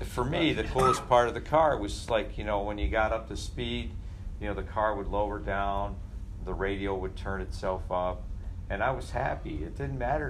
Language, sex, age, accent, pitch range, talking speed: English, male, 50-69, American, 90-105 Hz, 220 wpm